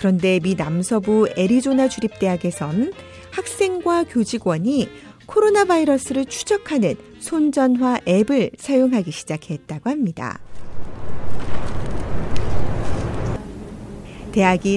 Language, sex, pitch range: Korean, female, 175-265 Hz